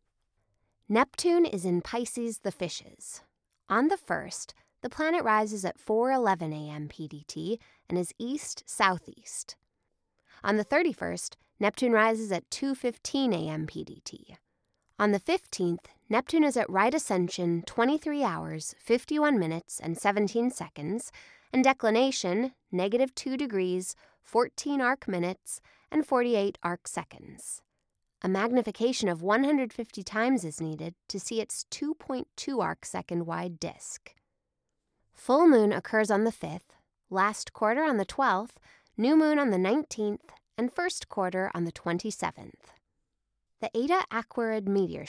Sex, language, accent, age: female, English, American, 20-39